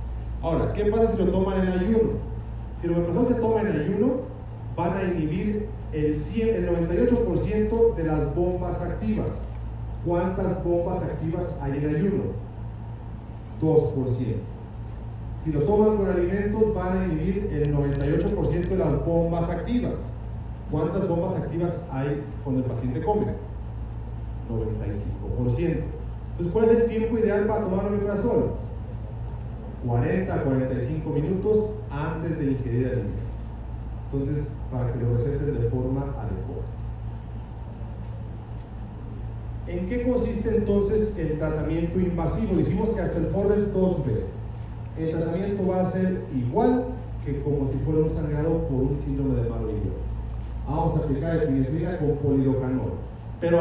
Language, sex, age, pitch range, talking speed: Spanish, male, 40-59, 115-180 Hz, 135 wpm